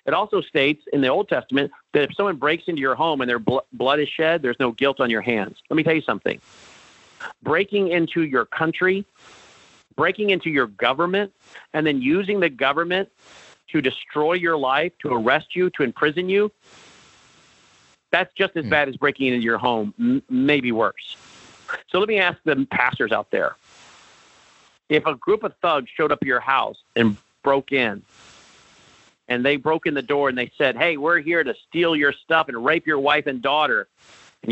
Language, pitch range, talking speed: English, 135-175 Hz, 190 wpm